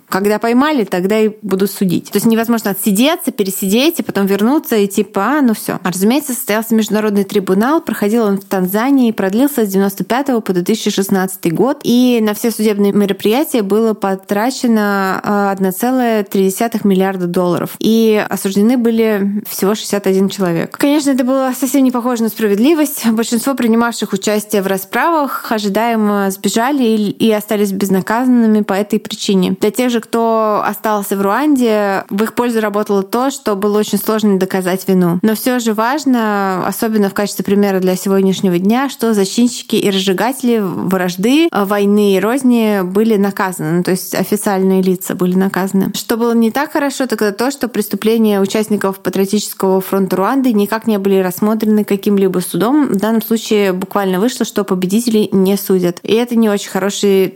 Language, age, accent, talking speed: Russian, 20-39, native, 155 wpm